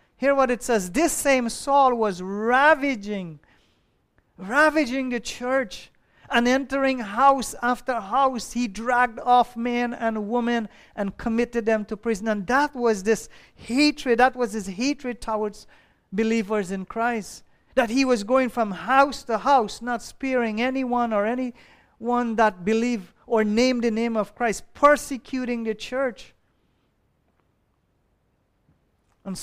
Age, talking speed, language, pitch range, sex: 40-59, 135 wpm, English, 215-255 Hz, male